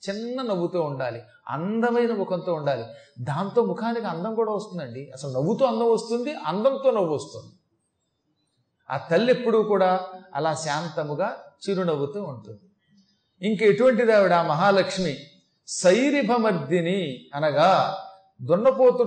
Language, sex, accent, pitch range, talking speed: Telugu, male, native, 145-195 Hz, 100 wpm